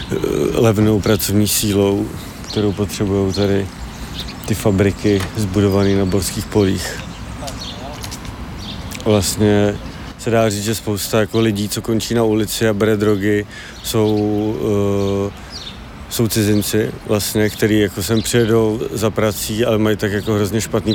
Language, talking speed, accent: Czech, 125 wpm, native